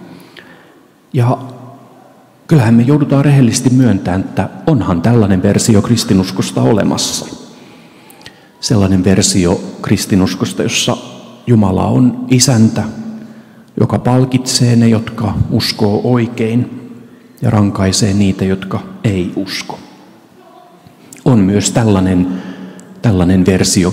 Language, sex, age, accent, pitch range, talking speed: Finnish, male, 40-59, native, 95-125 Hz, 90 wpm